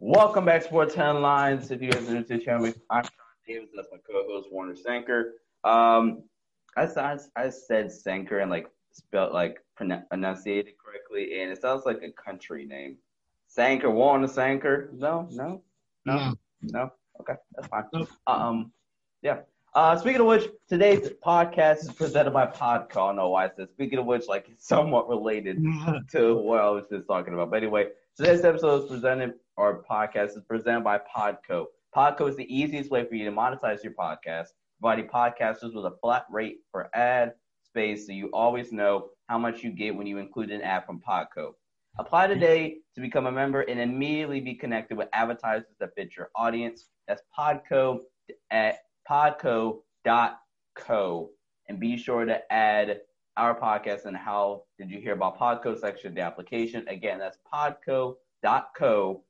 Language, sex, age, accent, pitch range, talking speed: English, male, 20-39, American, 110-150 Hz, 170 wpm